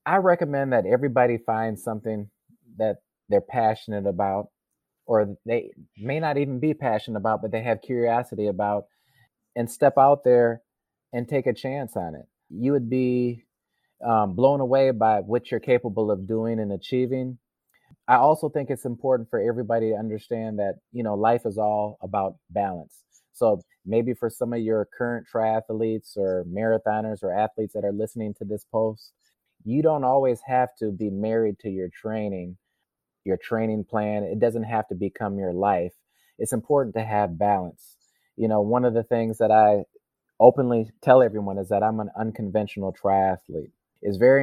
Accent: American